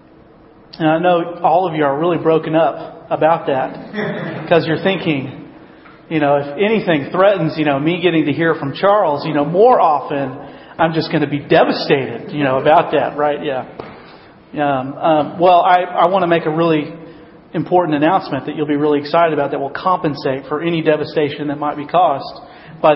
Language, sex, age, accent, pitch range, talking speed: English, male, 40-59, American, 150-180 Hz, 190 wpm